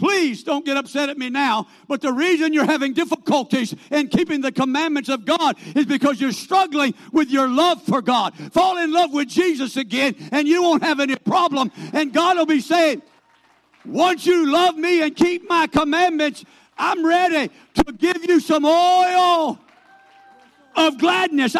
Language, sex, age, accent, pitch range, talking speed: English, male, 50-69, American, 270-345 Hz, 170 wpm